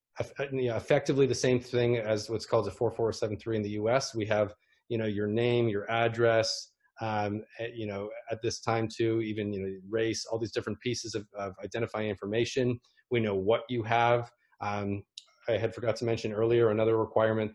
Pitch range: 105-120 Hz